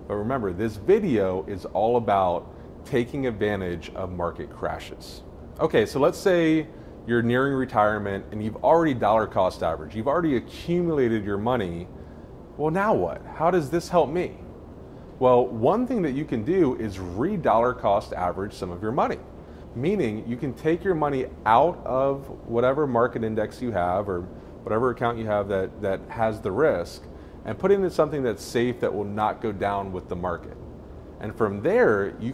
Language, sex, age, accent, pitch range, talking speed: English, male, 30-49, American, 95-130 Hz, 175 wpm